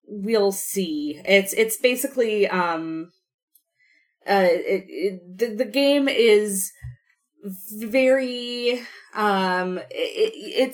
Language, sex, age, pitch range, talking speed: English, female, 20-39, 180-255 Hz, 90 wpm